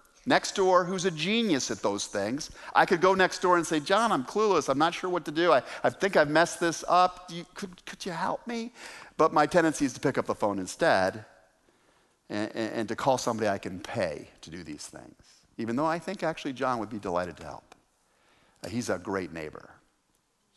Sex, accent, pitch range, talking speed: male, American, 110-170 Hz, 215 wpm